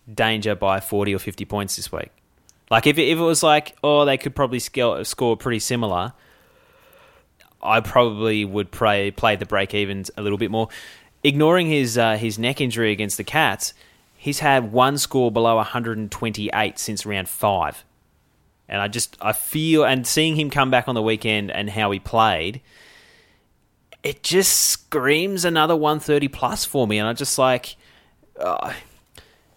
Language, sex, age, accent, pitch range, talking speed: English, male, 20-39, Australian, 105-135 Hz, 170 wpm